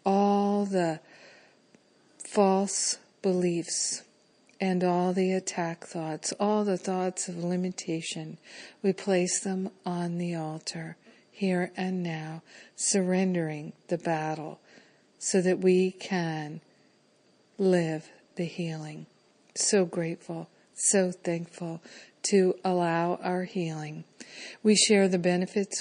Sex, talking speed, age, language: female, 105 wpm, 50-69, English